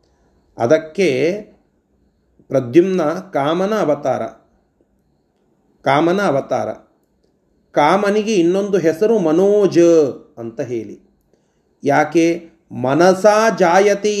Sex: male